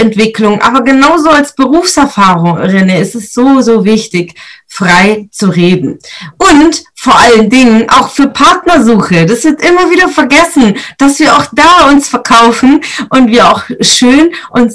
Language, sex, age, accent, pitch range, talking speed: German, female, 30-49, German, 200-255 Hz, 150 wpm